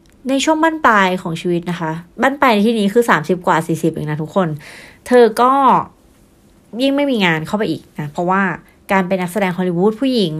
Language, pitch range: Thai, 175-215 Hz